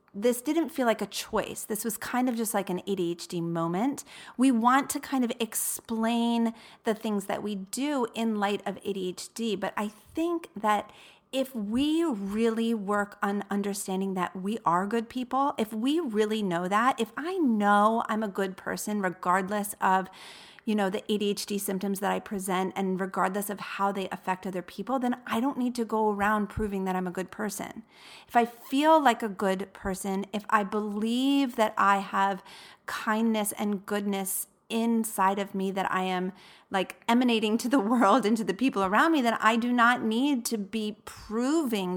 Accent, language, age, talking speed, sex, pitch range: American, English, 40-59, 185 wpm, female, 195-235 Hz